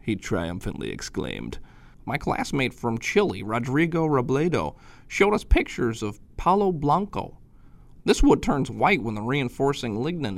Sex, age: male, 30-49